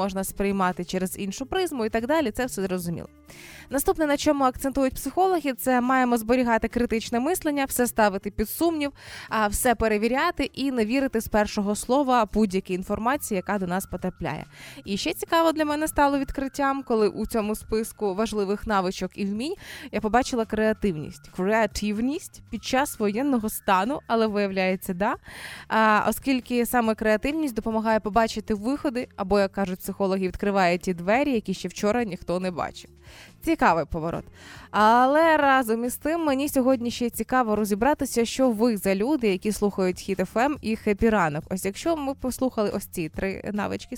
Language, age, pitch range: Ukrainian, 20-39, 195-260 Hz